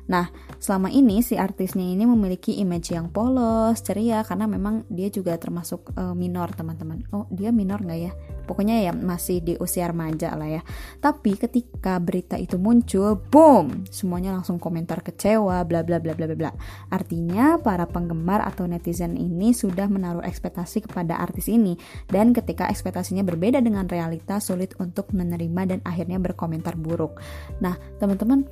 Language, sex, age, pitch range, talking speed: Indonesian, female, 20-39, 170-205 Hz, 145 wpm